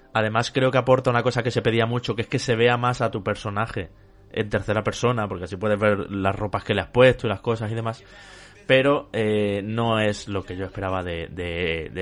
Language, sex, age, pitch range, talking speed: Spanish, male, 20-39, 105-120 Hz, 240 wpm